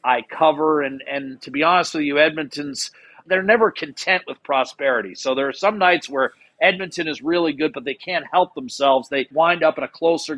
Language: English